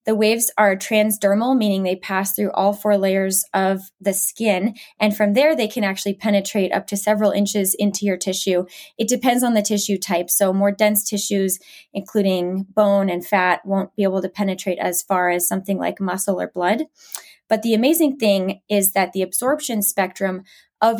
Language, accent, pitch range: English, American, 195-225 Hz